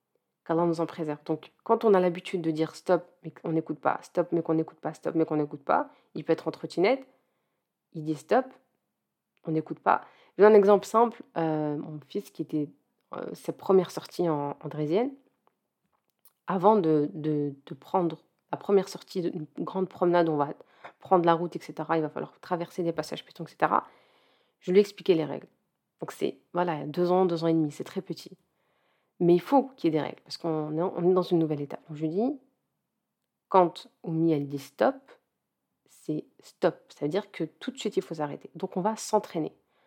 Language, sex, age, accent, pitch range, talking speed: French, female, 30-49, French, 160-190 Hz, 215 wpm